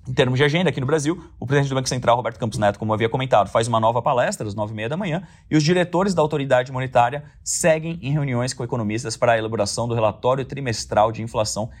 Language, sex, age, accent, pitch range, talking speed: Portuguese, male, 30-49, Brazilian, 115-155 Hz, 230 wpm